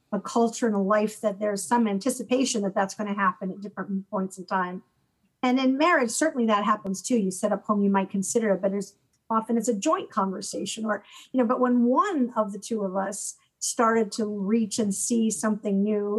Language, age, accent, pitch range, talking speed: English, 50-69, American, 200-230 Hz, 220 wpm